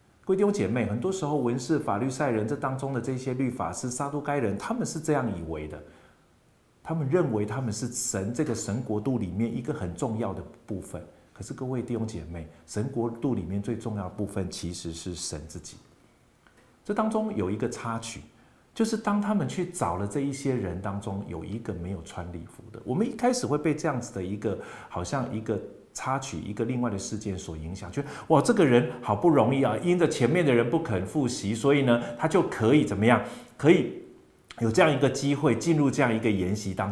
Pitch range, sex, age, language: 105-155 Hz, male, 50-69, Chinese